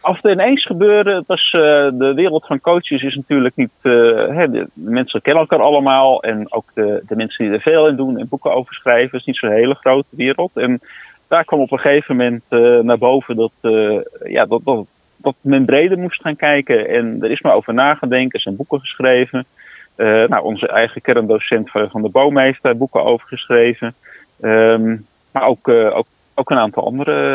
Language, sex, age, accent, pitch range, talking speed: English, male, 30-49, Dutch, 120-145 Hz, 205 wpm